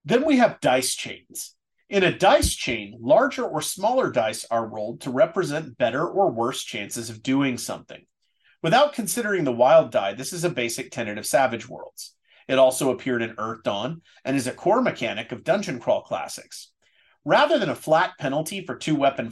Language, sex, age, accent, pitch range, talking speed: English, male, 40-59, American, 130-200 Hz, 185 wpm